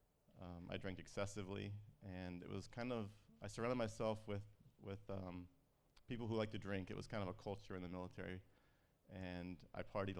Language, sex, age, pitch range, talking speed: English, male, 30-49, 95-105 Hz, 180 wpm